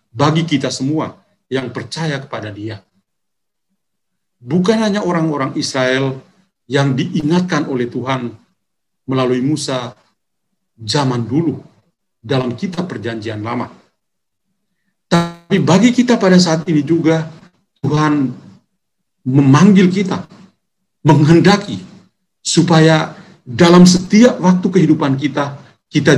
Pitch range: 130-175 Hz